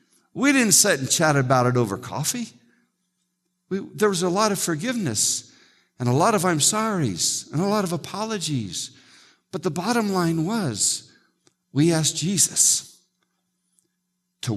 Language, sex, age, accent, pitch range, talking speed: English, male, 60-79, American, 125-185 Hz, 145 wpm